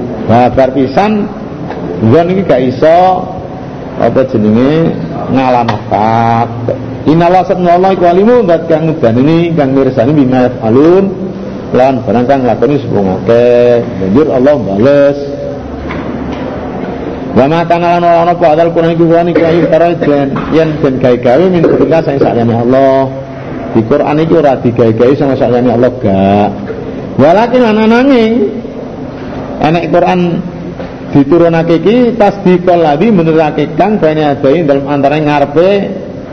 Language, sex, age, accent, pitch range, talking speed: Indonesian, male, 50-69, native, 130-170 Hz, 115 wpm